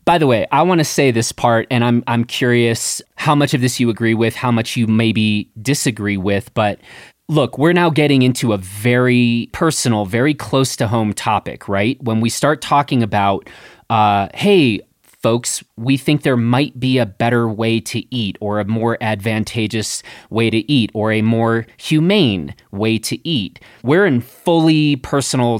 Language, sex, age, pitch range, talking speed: English, male, 30-49, 115-150 Hz, 180 wpm